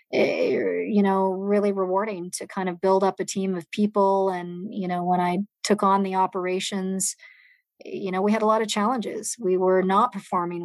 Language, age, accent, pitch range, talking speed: English, 40-59, American, 180-210 Hz, 190 wpm